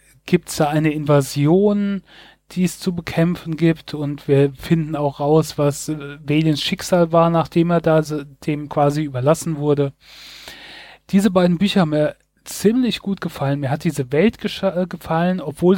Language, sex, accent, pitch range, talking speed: German, male, German, 145-170 Hz, 155 wpm